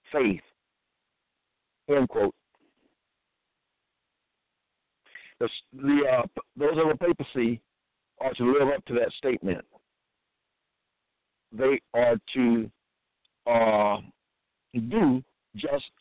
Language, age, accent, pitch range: English, 60-79, American, 120-155 Hz